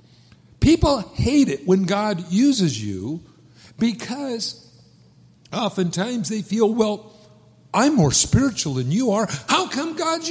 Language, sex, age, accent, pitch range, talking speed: English, male, 60-79, American, 140-215 Hz, 120 wpm